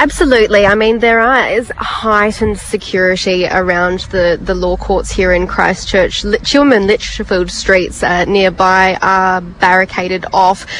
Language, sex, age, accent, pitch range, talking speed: English, female, 20-39, Australian, 180-210 Hz, 135 wpm